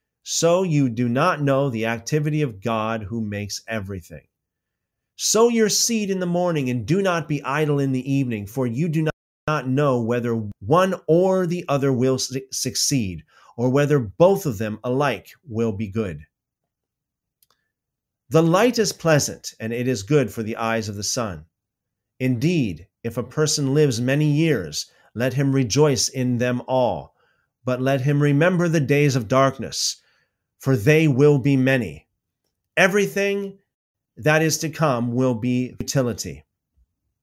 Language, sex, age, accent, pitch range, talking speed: English, male, 30-49, American, 115-155 Hz, 155 wpm